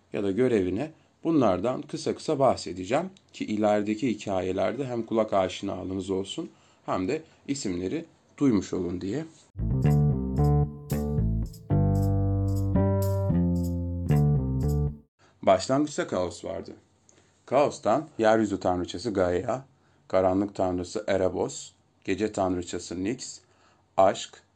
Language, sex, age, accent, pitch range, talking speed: Turkish, male, 40-59, native, 90-115 Hz, 85 wpm